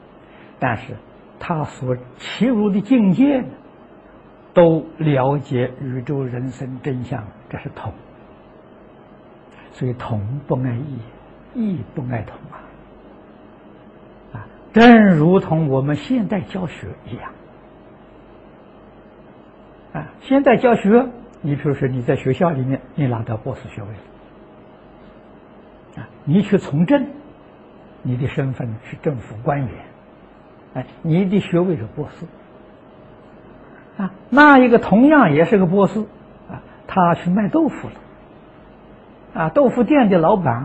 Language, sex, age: Chinese, male, 60-79